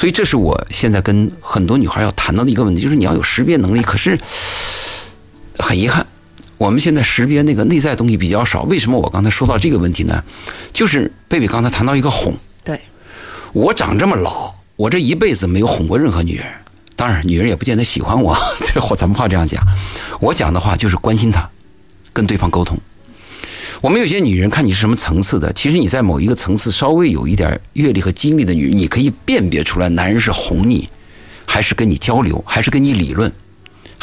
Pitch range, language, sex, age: 90-110 Hz, Chinese, male, 50-69